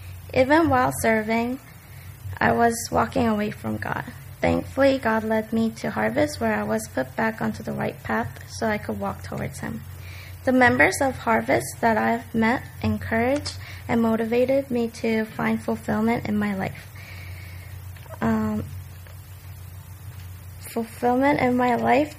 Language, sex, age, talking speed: English, female, 20-39, 140 wpm